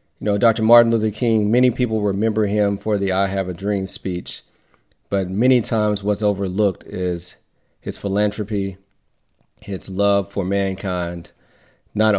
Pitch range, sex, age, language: 90-105 Hz, male, 30-49, English